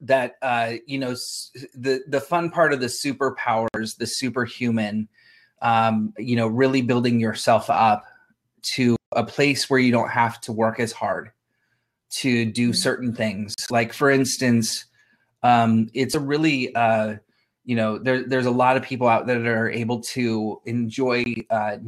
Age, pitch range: 20-39, 110-130 Hz